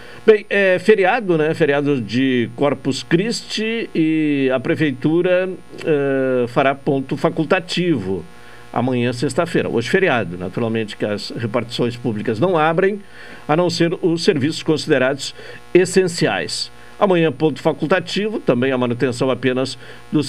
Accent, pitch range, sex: Brazilian, 125-165 Hz, male